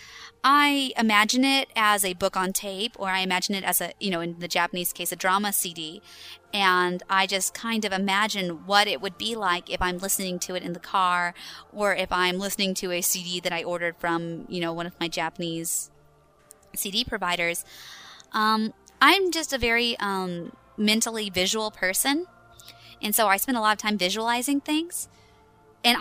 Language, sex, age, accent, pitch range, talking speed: English, female, 20-39, American, 175-210 Hz, 185 wpm